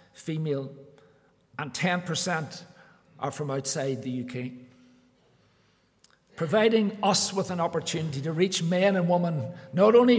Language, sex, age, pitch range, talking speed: English, male, 50-69, 145-180 Hz, 120 wpm